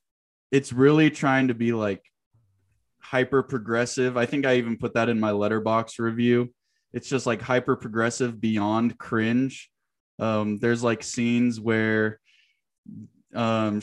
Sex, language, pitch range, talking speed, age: male, English, 110-125 Hz, 125 wpm, 20-39